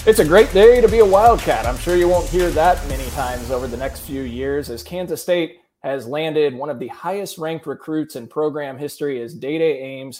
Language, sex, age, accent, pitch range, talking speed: English, male, 20-39, American, 120-150 Hz, 230 wpm